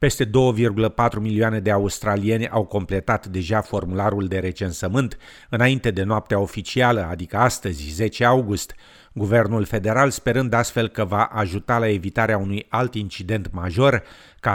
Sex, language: male, Romanian